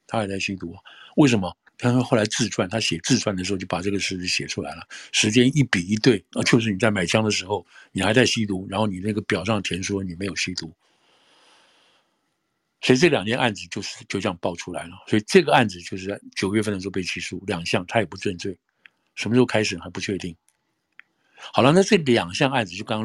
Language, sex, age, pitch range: Chinese, male, 60-79, 95-115 Hz